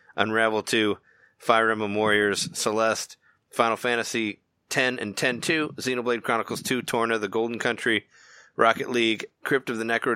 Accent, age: American, 30-49